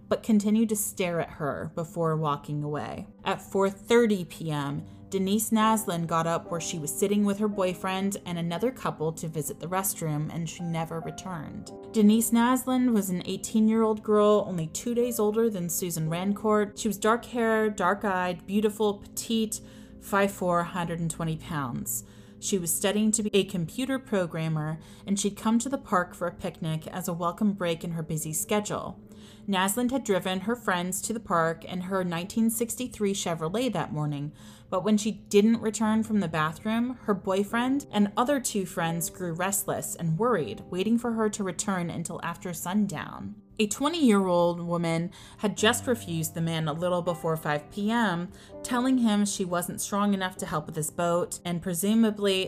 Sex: female